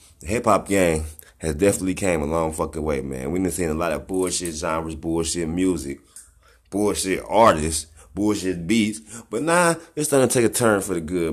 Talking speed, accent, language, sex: 190 wpm, American, English, male